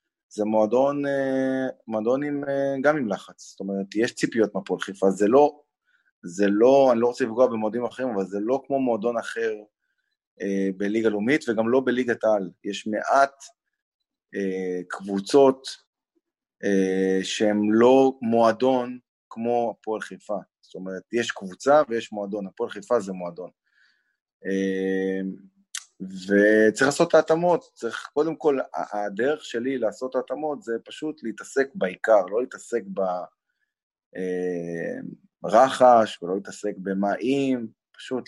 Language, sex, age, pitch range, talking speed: Hebrew, male, 20-39, 100-130 Hz, 120 wpm